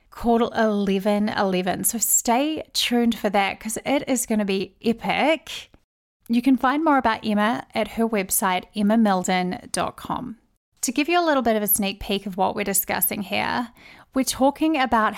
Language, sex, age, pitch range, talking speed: English, female, 30-49, 205-245 Hz, 165 wpm